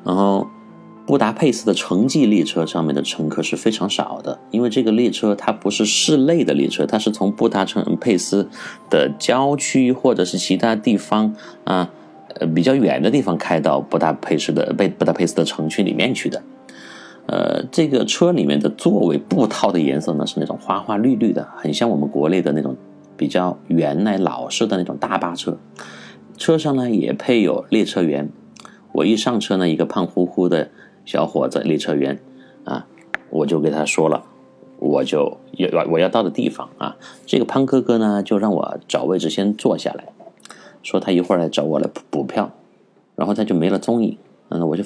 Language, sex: Chinese, male